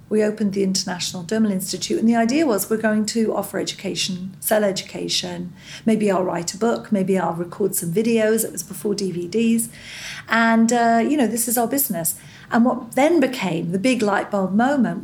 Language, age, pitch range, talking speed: English, 40-59, 175-225 Hz, 190 wpm